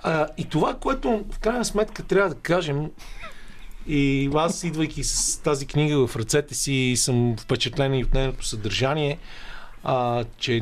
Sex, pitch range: male, 120-145 Hz